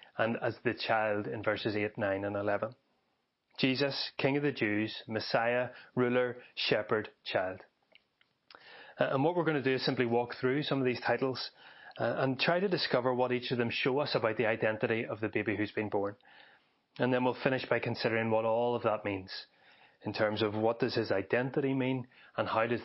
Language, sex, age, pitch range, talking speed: English, male, 30-49, 115-140 Hz, 195 wpm